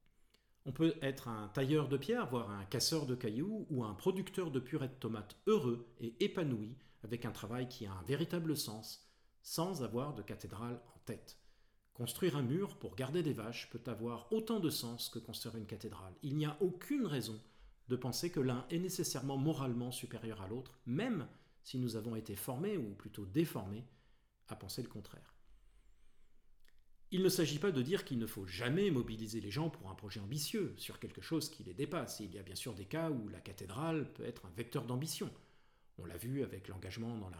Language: French